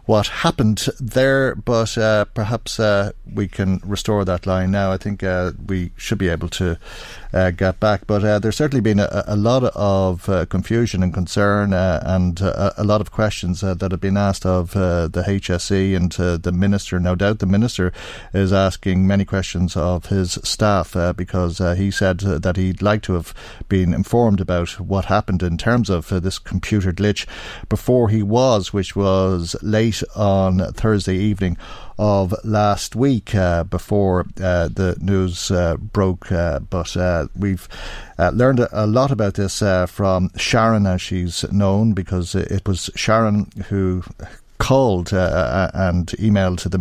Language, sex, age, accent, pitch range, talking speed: English, male, 50-69, Irish, 90-105 Hz, 175 wpm